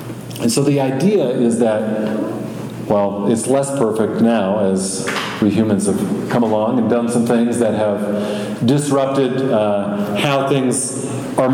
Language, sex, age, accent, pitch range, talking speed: English, male, 40-59, American, 115-155 Hz, 145 wpm